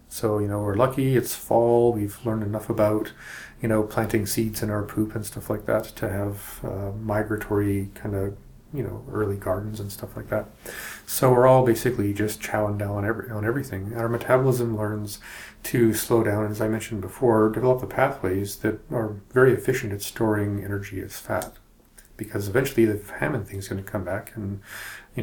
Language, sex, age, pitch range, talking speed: English, male, 40-59, 100-120 Hz, 195 wpm